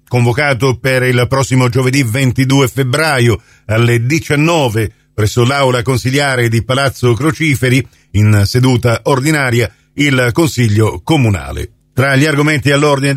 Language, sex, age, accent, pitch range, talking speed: Italian, male, 50-69, native, 120-140 Hz, 115 wpm